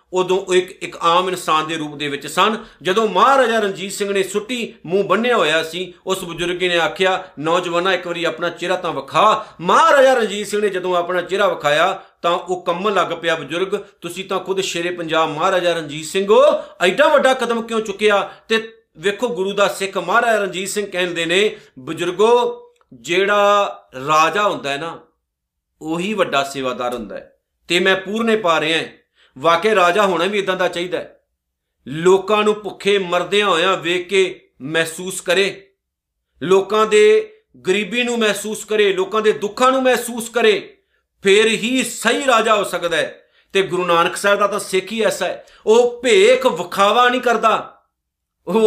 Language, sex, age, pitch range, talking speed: Punjabi, male, 50-69, 175-230 Hz, 150 wpm